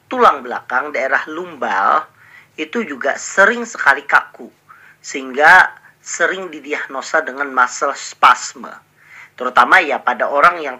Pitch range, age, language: 130-210 Hz, 40-59, Indonesian